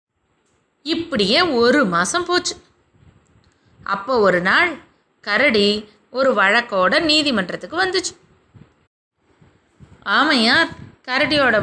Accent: native